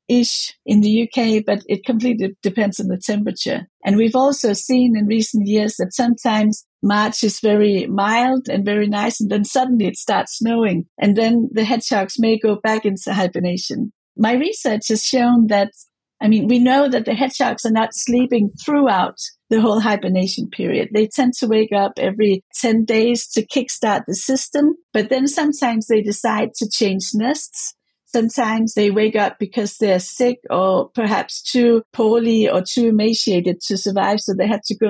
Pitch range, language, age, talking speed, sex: 205-240 Hz, English, 50-69, 175 wpm, female